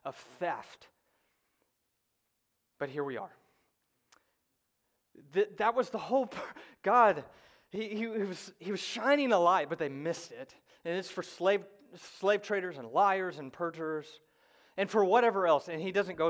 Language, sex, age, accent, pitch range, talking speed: English, male, 30-49, American, 145-210 Hz, 145 wpm